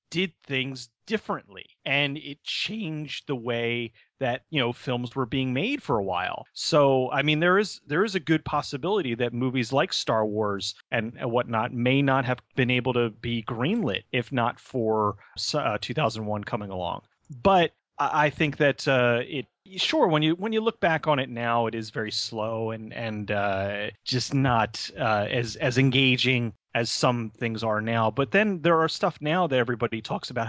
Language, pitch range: English, 115-155 Hz